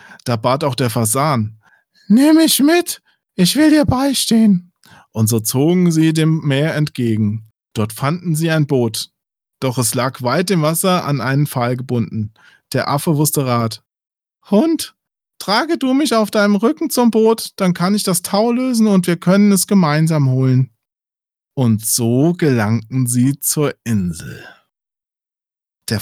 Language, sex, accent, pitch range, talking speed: German, male, German, 120-170 Hz, 150 wpm